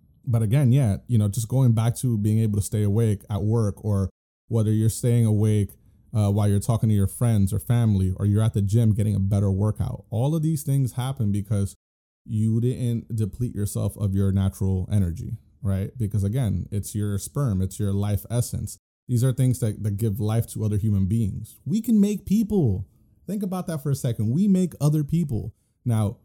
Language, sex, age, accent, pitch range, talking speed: English, male, 20-39, American, 100-125 Hz, 205 wpm